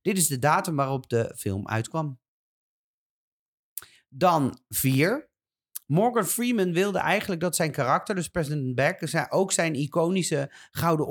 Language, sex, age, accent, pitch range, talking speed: Dutch, male, 40-59, Dutch, 125-170 Hz, 130 wpm